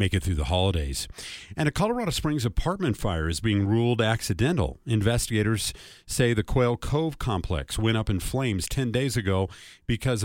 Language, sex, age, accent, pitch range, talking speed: English, male, 40-59, American, 95-125 Hz, 170 wpm